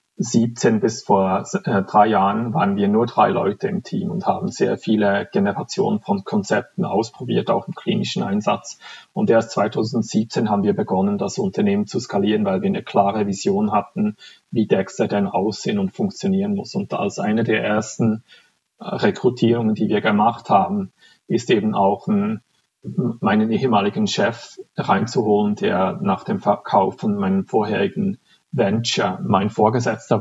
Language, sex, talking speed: German, male, 145 wpm